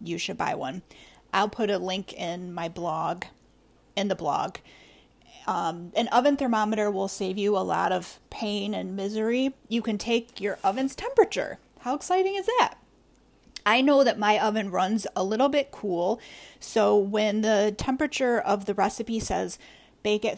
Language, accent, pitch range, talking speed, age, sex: English, American, 200-250 Hz, 170 wpm, 30-49, female